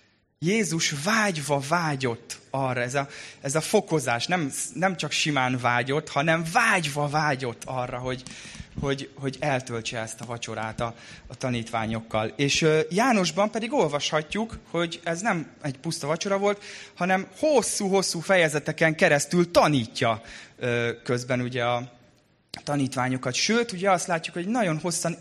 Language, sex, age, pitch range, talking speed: Hungarian, male, 20-39, 120-170 Hz, 125 wpm